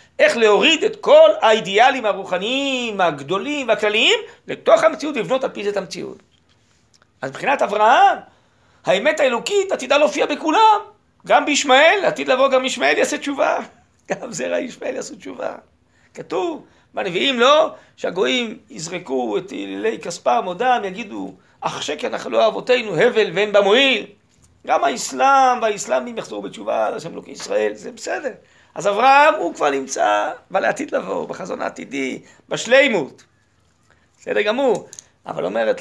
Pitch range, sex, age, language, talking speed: 175-275 Hz, male, 40-59, Hebrew, 130 wpm